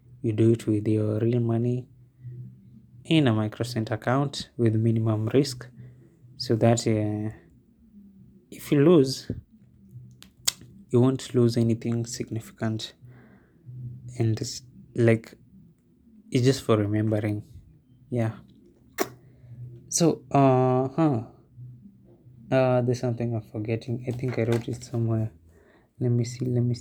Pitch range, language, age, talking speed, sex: 115-130 Hz, English, 20-39, 115 wpm, male